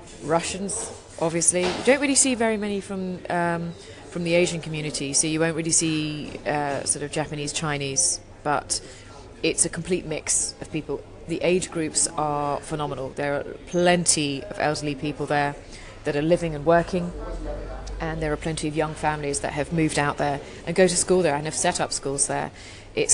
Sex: female